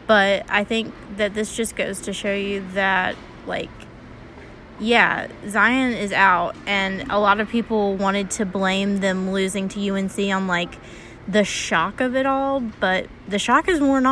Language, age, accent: English, 20-39, American